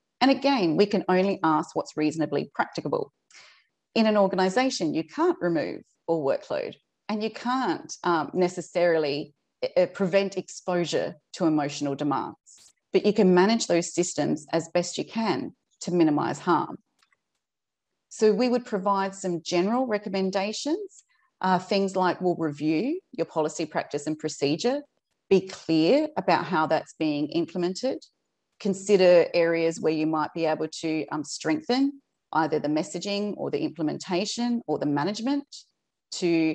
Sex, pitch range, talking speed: female, 160-210 Hz, 140 wpm